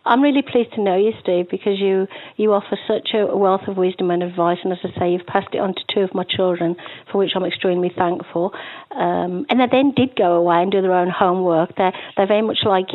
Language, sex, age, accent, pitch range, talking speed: English, female, 50-69, British, 180-215 Hz, 245 wpm